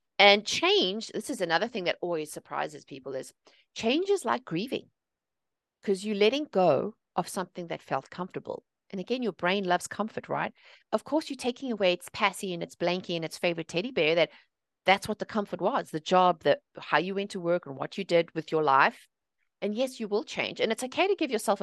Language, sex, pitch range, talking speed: English, female, 180-300 Hz, 215 wpm